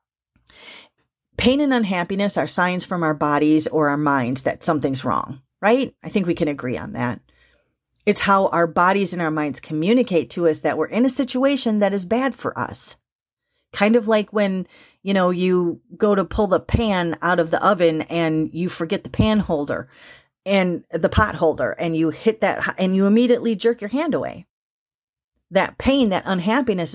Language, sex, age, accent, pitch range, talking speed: English, female, 40-59, American, 160-210 Hz, 185 wpm